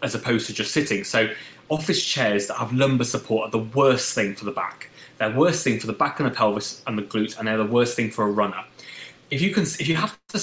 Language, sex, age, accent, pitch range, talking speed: English, male, 20-39, British, 110-140 Hz, 270 wpm